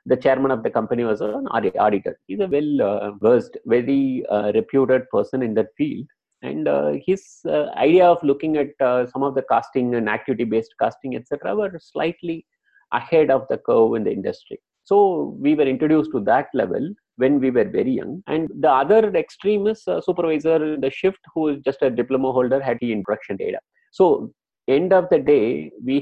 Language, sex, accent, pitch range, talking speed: English, male, Indian, 125-160 Hz, 175 wpm